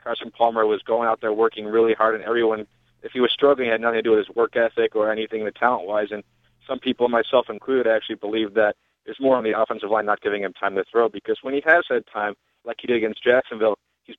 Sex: male